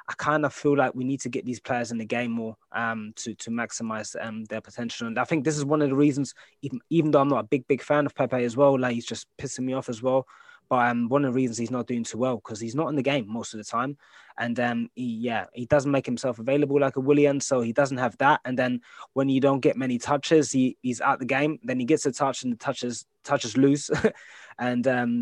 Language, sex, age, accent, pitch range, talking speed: English, male, 20-39, British, 120-145 Hz, 275 wpm